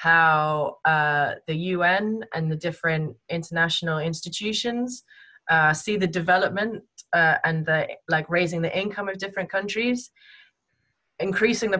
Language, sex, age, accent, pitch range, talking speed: English, female, 20-39, British, 170-225 Hz, 125 wpm